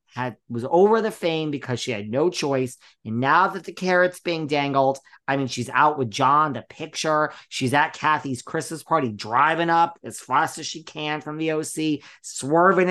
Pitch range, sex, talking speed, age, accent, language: 130-175 Hz, male, 190 wpm, 40-59, American, English